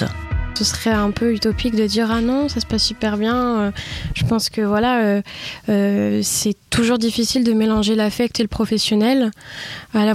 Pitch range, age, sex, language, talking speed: 200-225 Hz, 20-39, female, French, 195 wpm